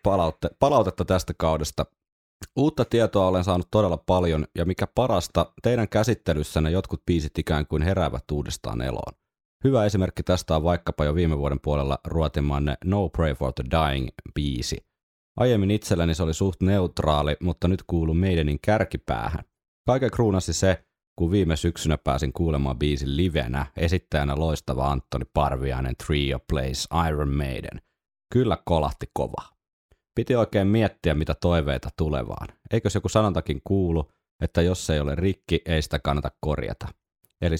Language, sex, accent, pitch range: Finnish, male, native, 75-95 Hz